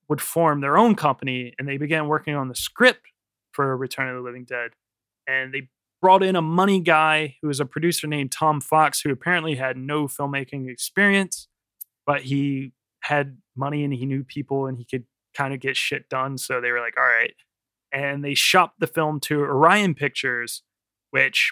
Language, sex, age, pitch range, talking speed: English, male, 20-39, 130-155 Hz, 190 wpm